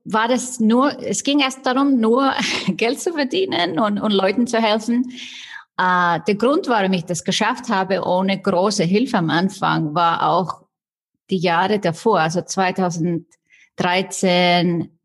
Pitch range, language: 170-215 Hz, German